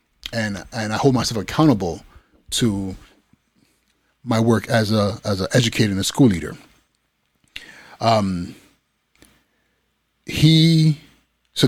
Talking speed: 110 wpm